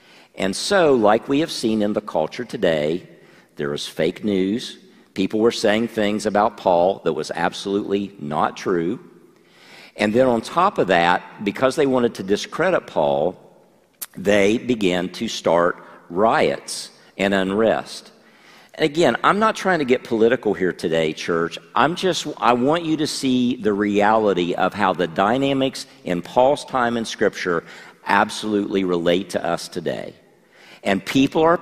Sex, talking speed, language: male, 155 wpm, English